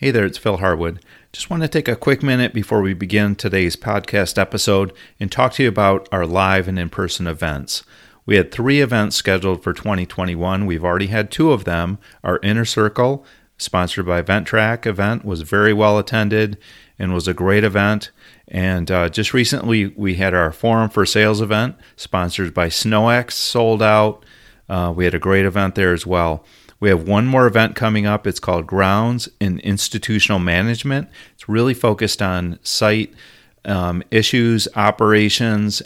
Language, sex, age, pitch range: English, male, 40-59, 90-110 Hz